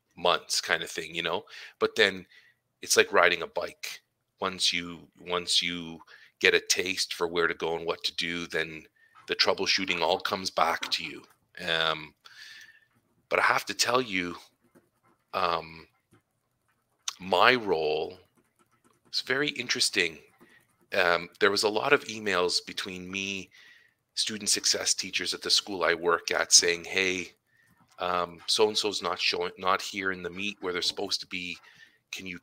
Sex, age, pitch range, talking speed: male, 40-59, 90-110 Hz, 160 wpm